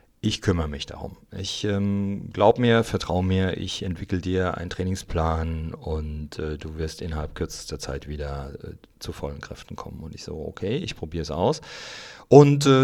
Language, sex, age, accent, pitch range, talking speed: German, male, 40-59, German, 85-110 Hz, 180 wpm